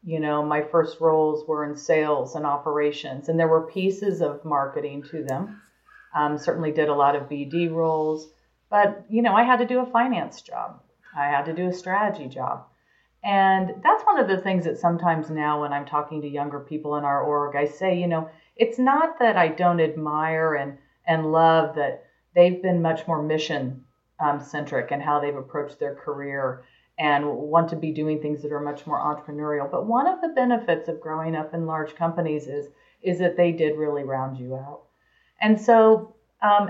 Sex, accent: female, American